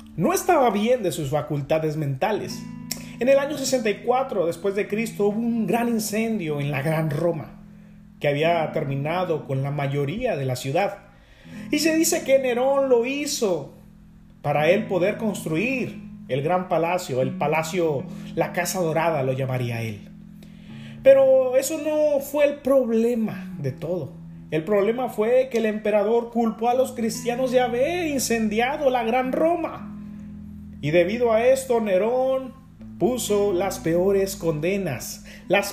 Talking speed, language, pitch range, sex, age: 145 wpm, Spanish, 150-225 Hz, male, 30-49